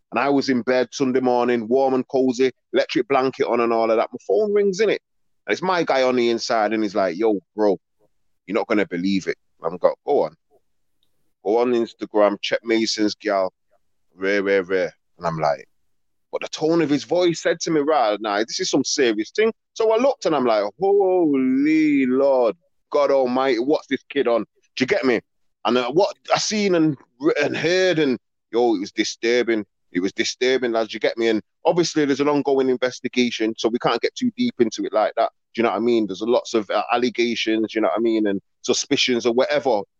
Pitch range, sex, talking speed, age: 110-155 Hz, male, 220 wpm, 20-39